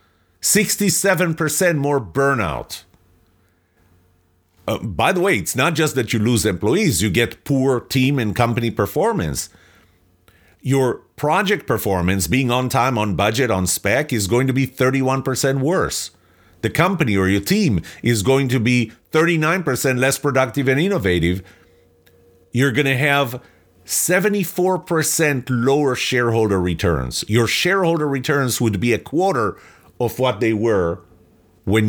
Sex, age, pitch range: male, 40-59, 95-135 Hz